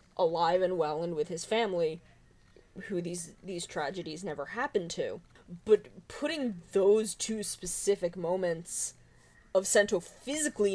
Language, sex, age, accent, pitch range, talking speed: English, female, 20-39, American, 175-215 Hz, 130 wpm